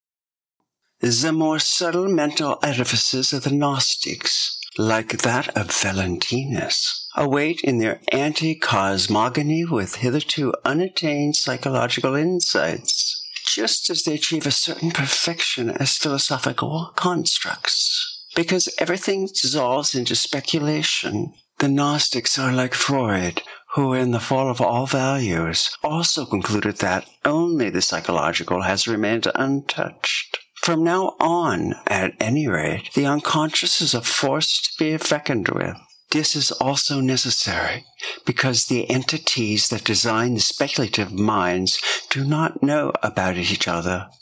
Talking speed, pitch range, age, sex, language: 120 wpm, 115-150 Hz, 60-79, male, German